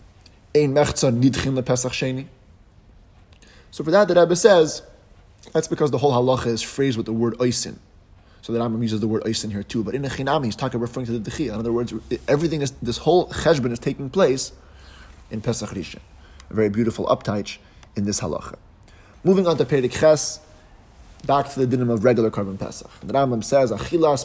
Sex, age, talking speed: male, 30-49, 180 wpm